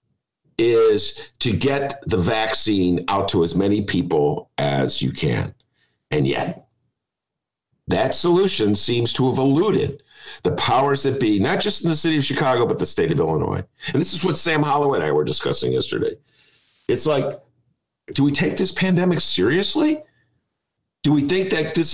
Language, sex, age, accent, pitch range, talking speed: English, male, 50-69, American, 120-190 Hz, 165 wpm